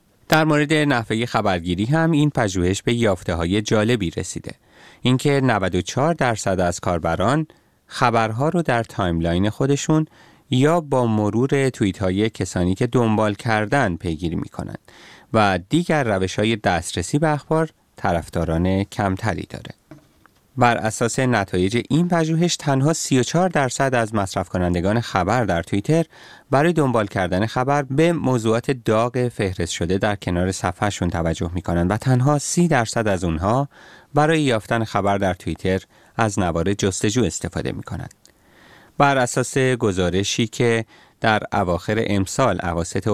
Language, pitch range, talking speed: Persian, 95-135 Hz, 135 wpm